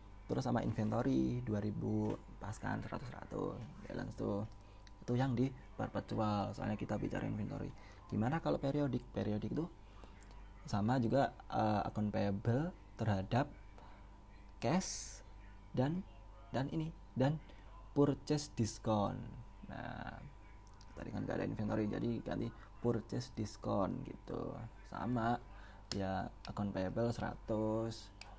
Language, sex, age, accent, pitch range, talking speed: Indonesian, male, 20-39, native, 100-120 Hz, 105 wpm